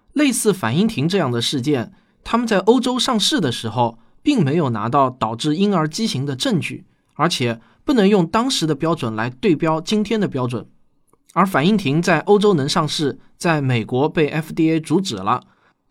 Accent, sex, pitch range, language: native, male, 130-200 Hz, Chinese